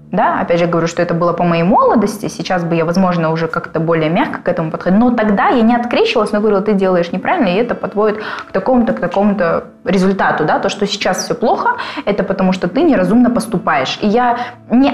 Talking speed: 215 wpm